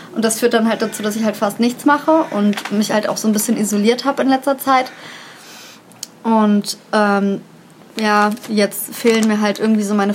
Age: 20-39